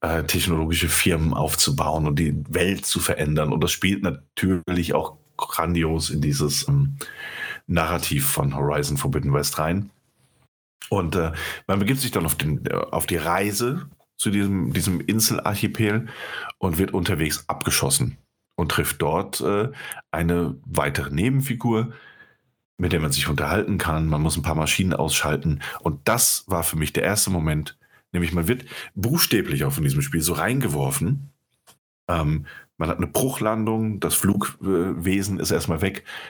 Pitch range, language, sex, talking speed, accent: 75-110 Hz, German, male, 145 wpm, German